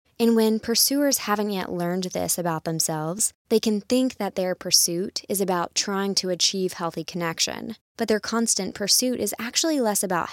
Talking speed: 175 wpm